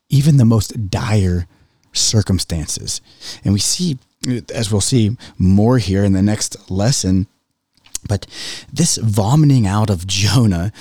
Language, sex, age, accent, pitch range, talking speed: English, male, 30-49, American, 85-110 Hz, 130 wpm